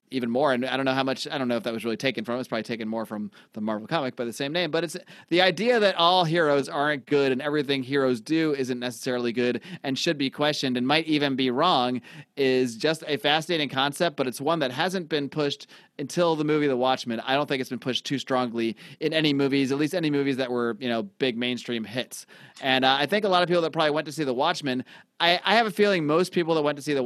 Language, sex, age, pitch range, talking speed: English, male, 30-49, 120-150 Hz, 265 wpm